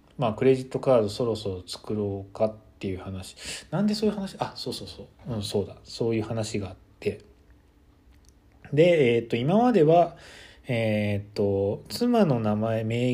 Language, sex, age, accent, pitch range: Japanese, male, 20-39, native, 100-150 Hz